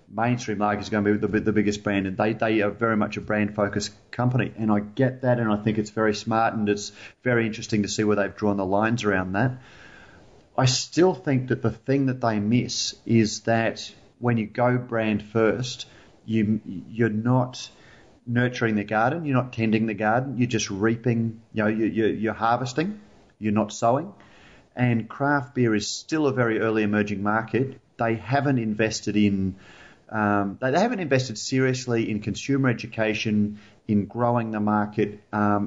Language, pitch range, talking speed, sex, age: English, 105-120 Hz, 185 wpm, male, 40-59